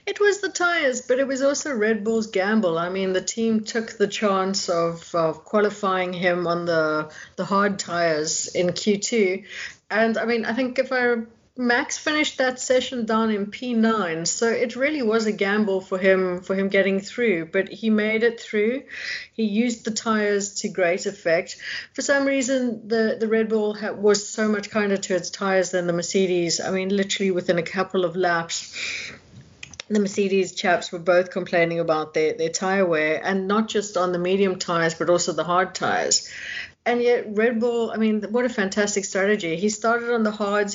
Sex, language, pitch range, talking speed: female, English, 185-225 Hz, 190 wpm